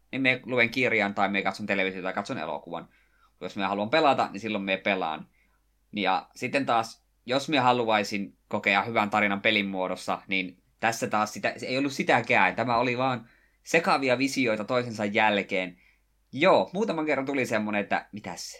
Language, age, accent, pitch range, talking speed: Finnish, 20-39, native, 95-115 Hz, 165 wpm